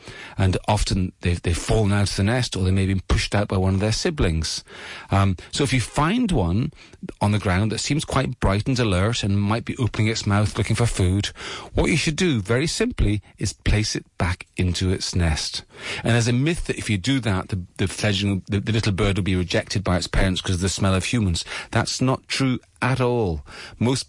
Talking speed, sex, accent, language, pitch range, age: 230 wpm, male, British, English, 95-115 Hz, 40-59